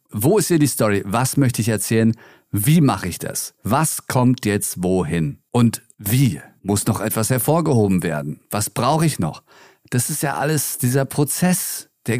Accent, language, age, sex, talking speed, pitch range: German, German, 40-59, male, 170 wpm, 105-140 Hz